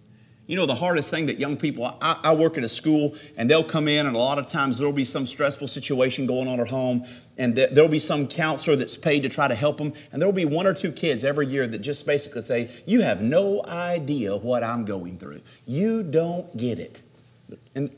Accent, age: American, 40-59